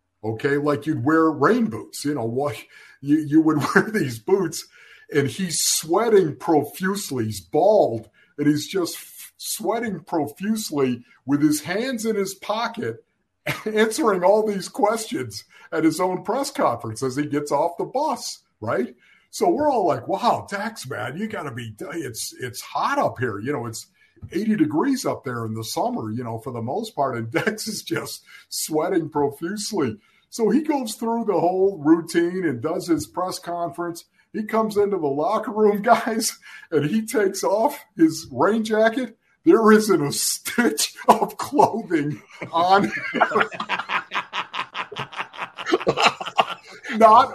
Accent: American